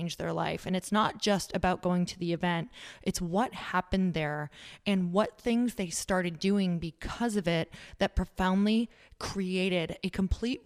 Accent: American